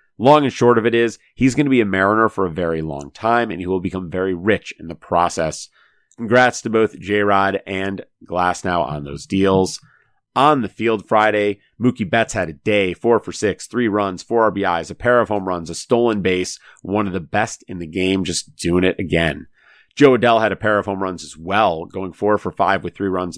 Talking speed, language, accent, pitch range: 225 wpm, English, American, 90-110 Hz